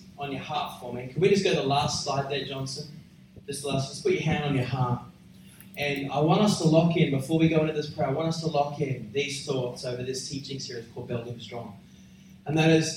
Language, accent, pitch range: English, Australian, 135-165 Hz